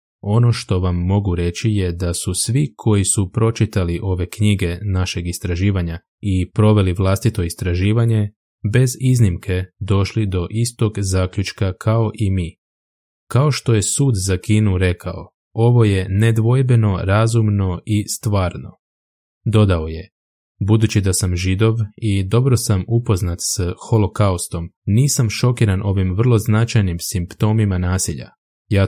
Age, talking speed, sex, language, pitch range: 20-39, 130 wpm, male, Croatian, 90-110 Hz